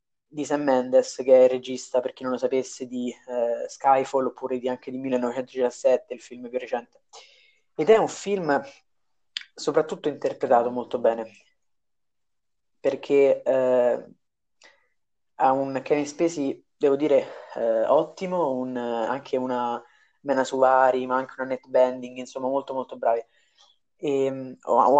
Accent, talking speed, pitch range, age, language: native, 135 wpm, 125-140 Hz, 20-39, Italian